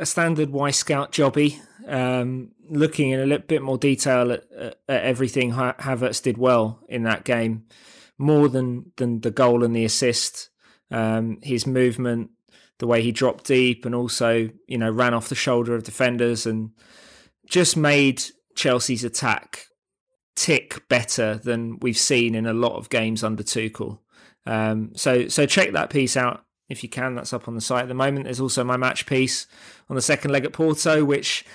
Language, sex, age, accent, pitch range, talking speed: English, male, 20-39, British, 120-135 Hz, 185 wpm